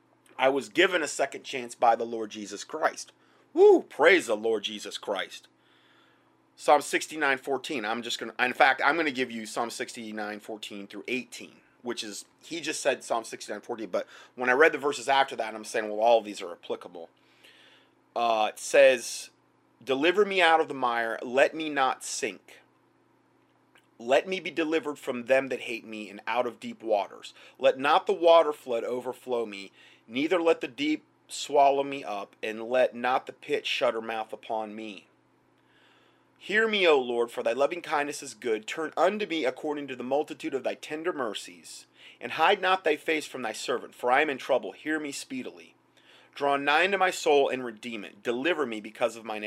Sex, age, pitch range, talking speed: male, 30-49, 115-170 Hz, 195 wpm